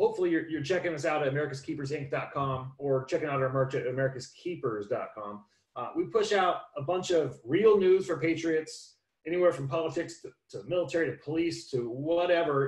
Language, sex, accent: English, male, American